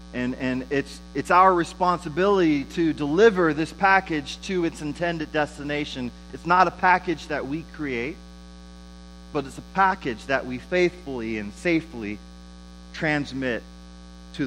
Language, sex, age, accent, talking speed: English, male, 30-49, American, 135 wpm